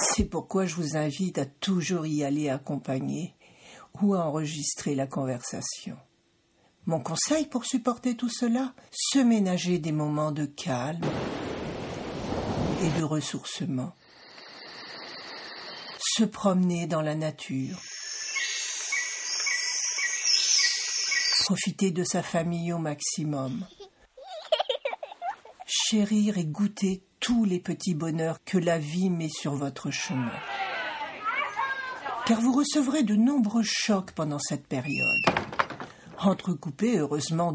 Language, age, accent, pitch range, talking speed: French, 60-79, French, 150-250 Hz, 105 wpm